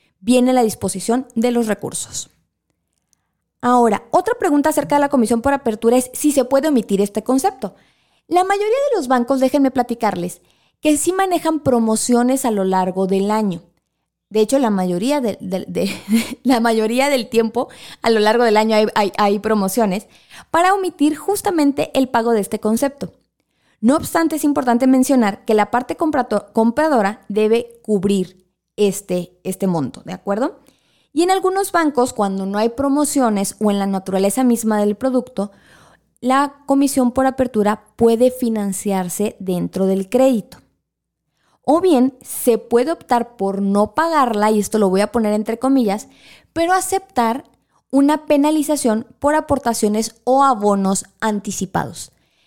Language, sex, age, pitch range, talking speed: Spanish, female, 20-39, 205-275 Hz, 145 wpm